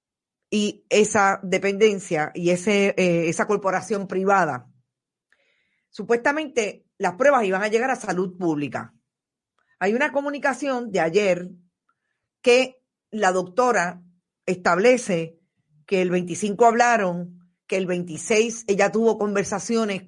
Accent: American